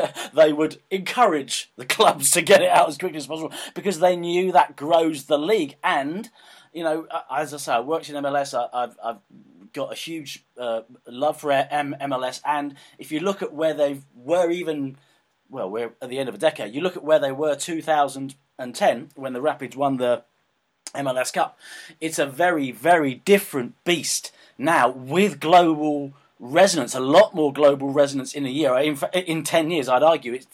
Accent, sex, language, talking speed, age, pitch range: British, male, English, 185 wpm, 30-49, 135-165 Hz